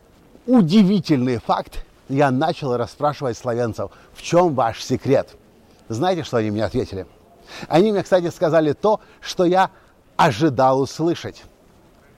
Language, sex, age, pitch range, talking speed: Russian, male, 50-69, 125-180 Hz, 120 wpm